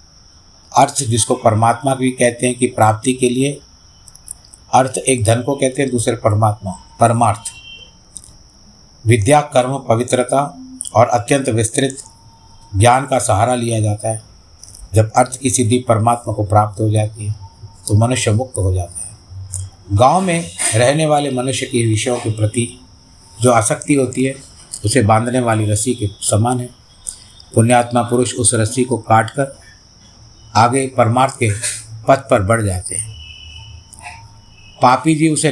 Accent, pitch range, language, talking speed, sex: native, 105-125 Hz, Hindi, 145 wpm, male